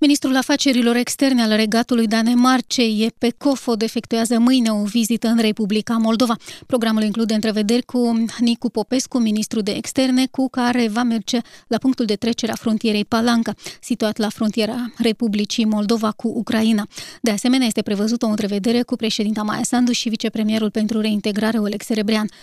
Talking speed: 155 wpm